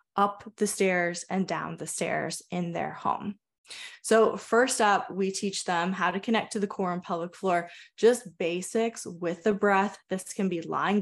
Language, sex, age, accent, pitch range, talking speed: English, female, 20-39, American, 180-215 Hz, 185 wpm